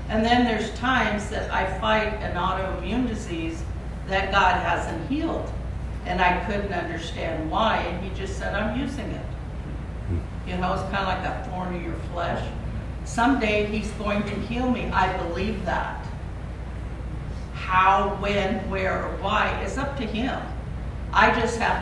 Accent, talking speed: American, 160 wpm